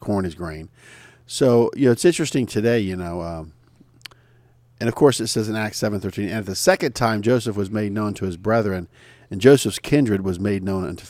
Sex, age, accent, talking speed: male, 50-69, American, 215 wpm